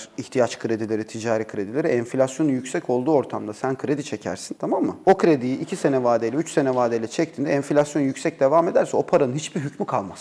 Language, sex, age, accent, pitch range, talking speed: Turkish, male, 40-59, native, 115-155 Hz, 180 wpm